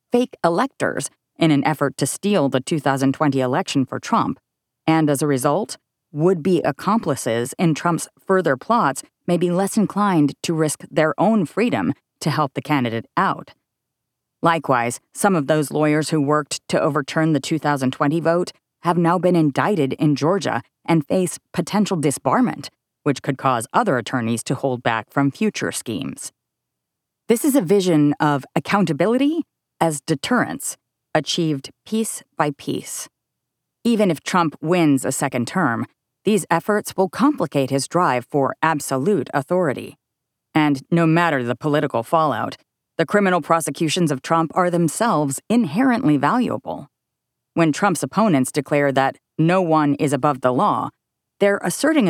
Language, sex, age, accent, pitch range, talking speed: English, female, 30-49, American, 140-180 Hz, 145 wpm